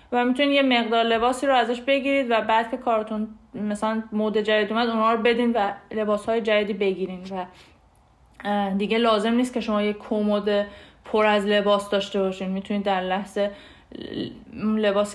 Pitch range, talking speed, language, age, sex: 205-240 Hz, 160 wpm, Persian, 20-39, female